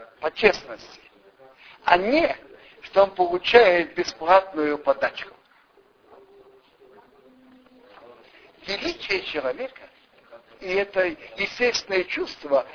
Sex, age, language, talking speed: male, 60-79, Russian, 70 wpm